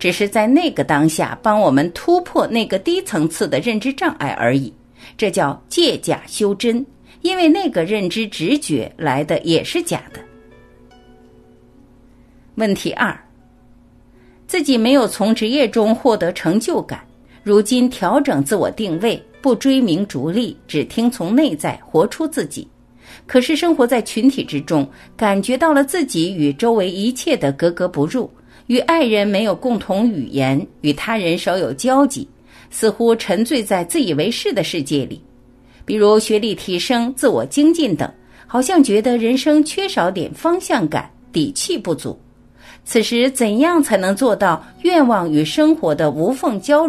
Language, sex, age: Chinese, female, 50-69